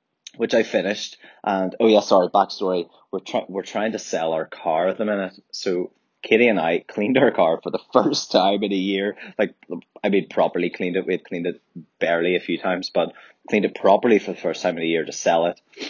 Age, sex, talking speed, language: 20-39, male, 235 wpm, English